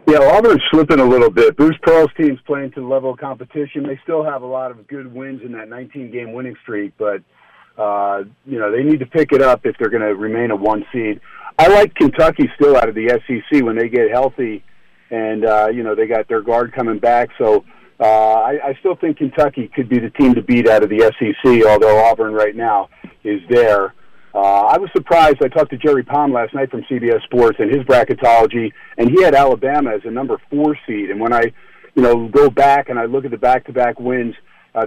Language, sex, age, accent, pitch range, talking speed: English, male, 50-69, American, 115-145 Hz, 225 wpm